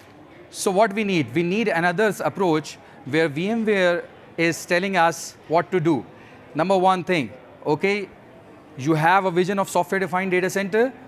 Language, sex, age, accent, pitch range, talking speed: English, male, 30-49, Indian, 155-195 Hz, 150 wpm